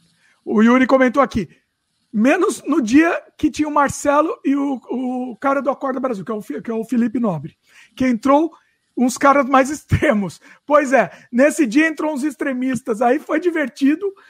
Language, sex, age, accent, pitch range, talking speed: Portuguese, male, 50-69, Brazilian, 220-295 Hz, 170 wpm